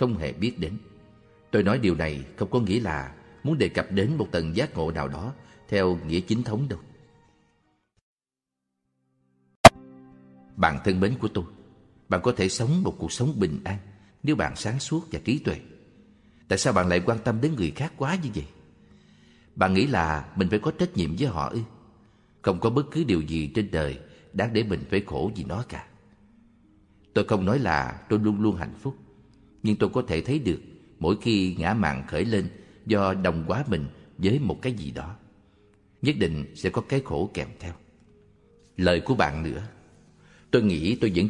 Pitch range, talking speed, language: 80-120 Hz, 195 wpm, Vietnamese